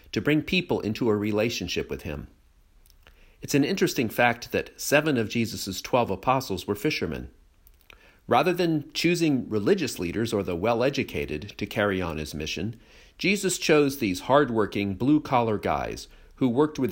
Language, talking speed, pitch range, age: English, 150 wpm, 85-130 Hz, 50-69